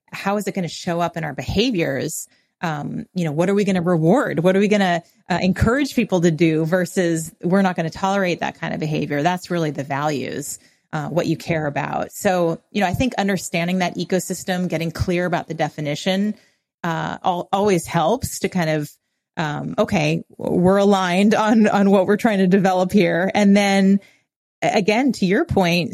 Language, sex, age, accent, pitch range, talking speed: English, female, 30-49, American, 165-195 Hz, 200 wpm